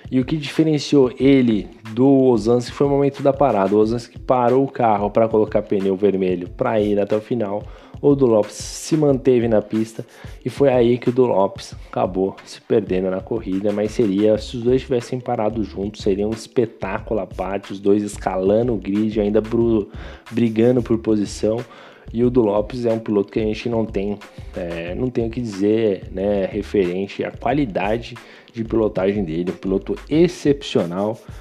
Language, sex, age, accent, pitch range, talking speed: Portuguese, male, 20-39, Brazilian, 105-125 Hz, 185 wpm